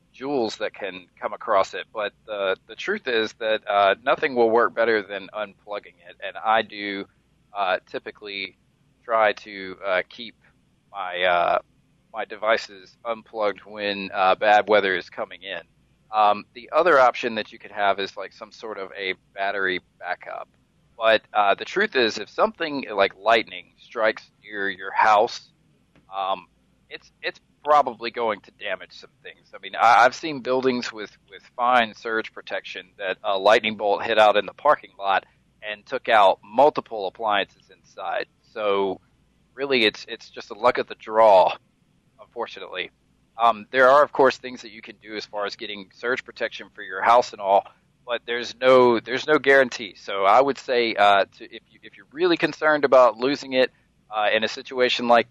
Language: English